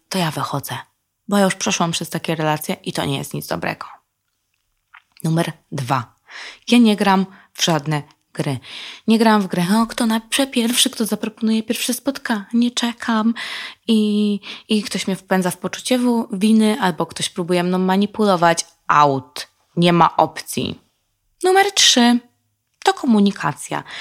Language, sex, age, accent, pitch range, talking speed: Polish, female, 20-39, native, 150-220 Hz, 140 wpm